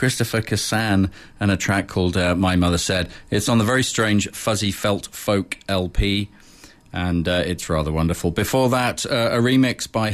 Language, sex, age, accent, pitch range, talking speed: English, male, 40-59, British, 90-110 Hz, 180 wpm